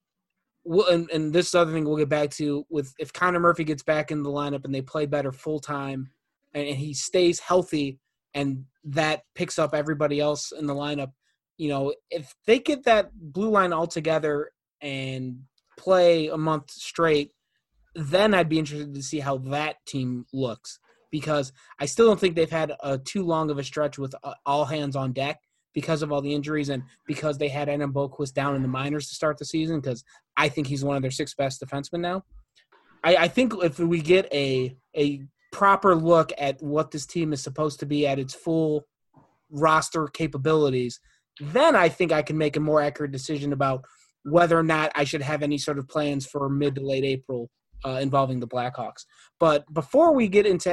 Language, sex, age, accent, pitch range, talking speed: English, male, 20-39, American, 140-165 Hz, 200 wpm